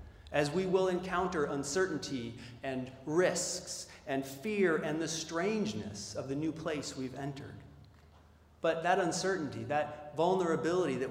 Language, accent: English, American